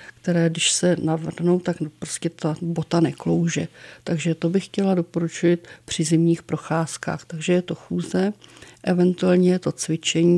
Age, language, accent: 50-69, Czech, native